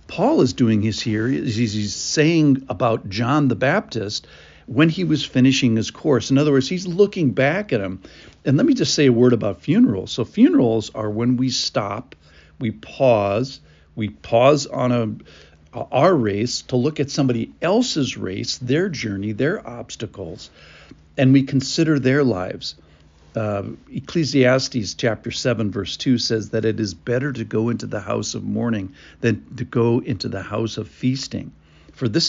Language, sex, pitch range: English, male, 105-135 Hz